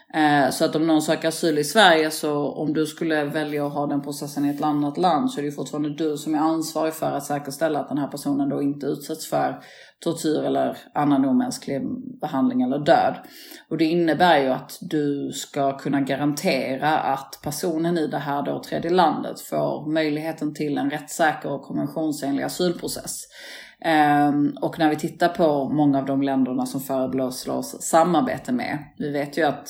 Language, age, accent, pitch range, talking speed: Swedish, 30-49, native, 140-165 Hz, 180 wpm